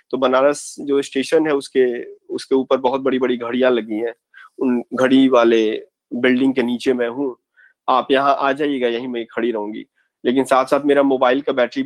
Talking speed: 185 wpm